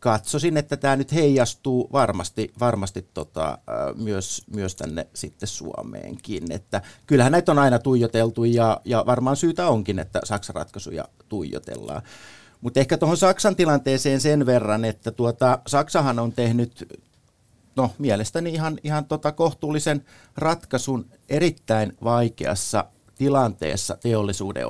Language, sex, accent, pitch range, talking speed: Finnish, male, native, 100-130 Hz, 125 wpm